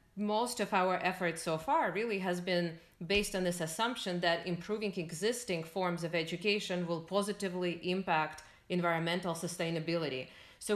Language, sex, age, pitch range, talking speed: English, female, 30-49, 165-195 Hz, 140 wpm